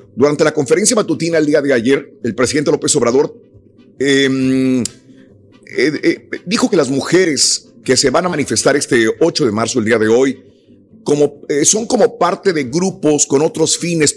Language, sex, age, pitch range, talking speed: Spanish, male, 50-69, 120-150 Hz, 175 wpm